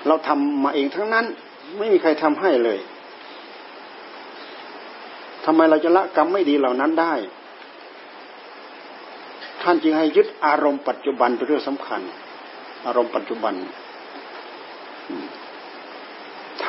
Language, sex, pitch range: Thai, male, 140-215 Hz